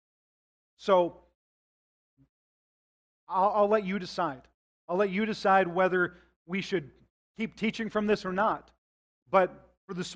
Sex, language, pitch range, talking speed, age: male, English, 155-195 Hz, 130 wpm, 40-59